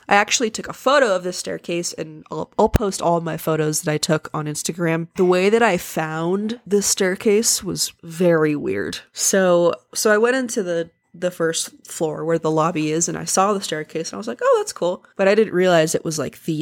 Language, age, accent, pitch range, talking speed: English, 20-39, American, 165-200 Hz, 230 wpm